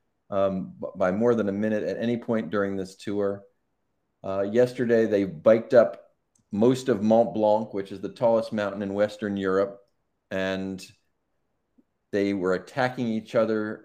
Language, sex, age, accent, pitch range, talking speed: English, male, 40-59, American, 100-120 Hz, 150 wpm